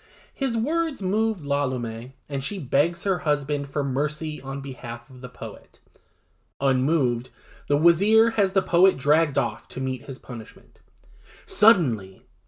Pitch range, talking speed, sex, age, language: 140-210 Hz, 140 wpm, male, 20-39, English